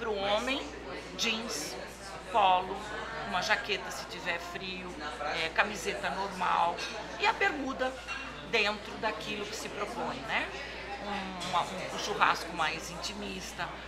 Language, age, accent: Portuguese, 40-59, Brazilian